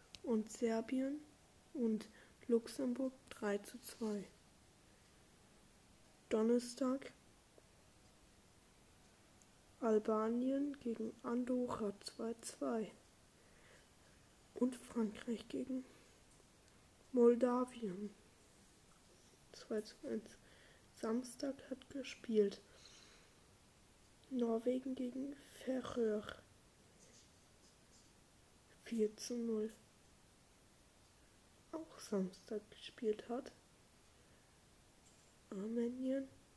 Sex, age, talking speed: female, 10-29, 55 wpm